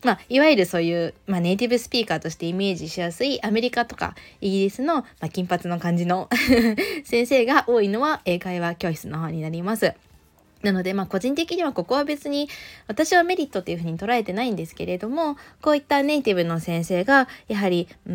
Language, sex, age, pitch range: Japanese, female, 20-39, 175-255 Hz